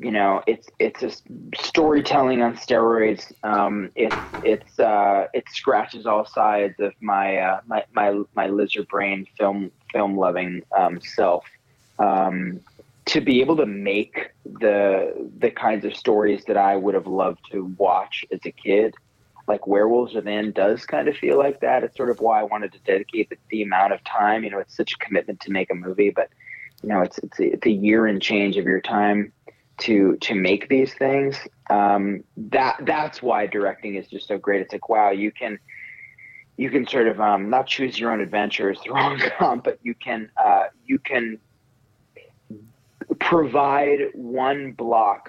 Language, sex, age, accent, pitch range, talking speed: English, male, 20-39, American, 100-130 Hz, 185 wpm